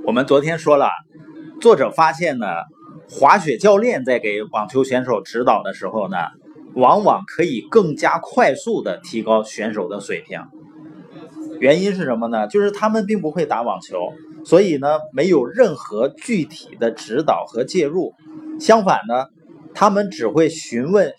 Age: 30-49